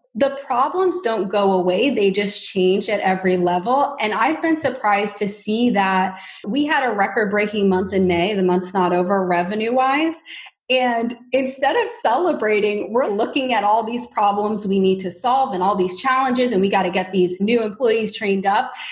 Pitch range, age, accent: 200-265 Hz, 20-39, American